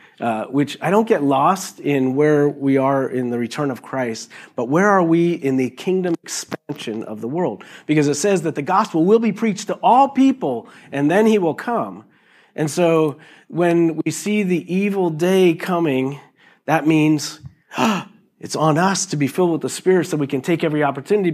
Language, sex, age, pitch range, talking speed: English, male, 40-59, 135-180 Hz, 195 wpm